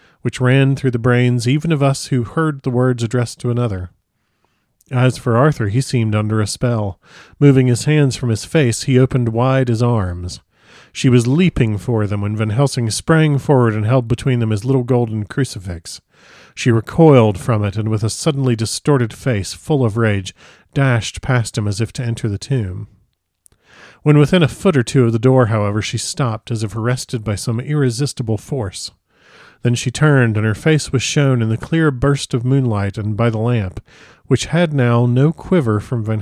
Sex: male